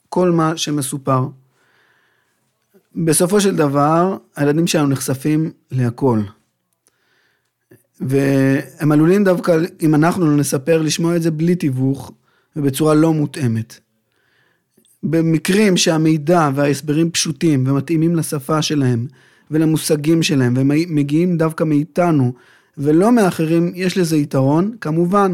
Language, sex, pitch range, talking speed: Hebrew, male, 140-175 Hz, 100 wpm